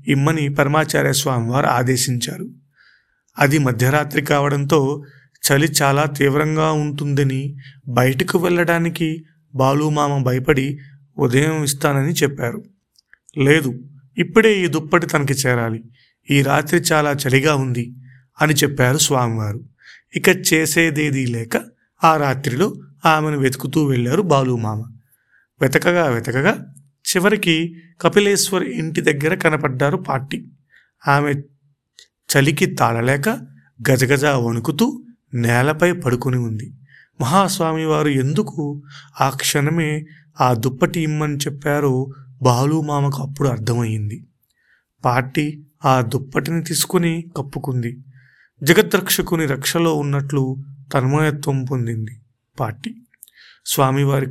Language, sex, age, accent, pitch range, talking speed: Telugu, male, 40-59, native, 130-155 Hz, 90 wpm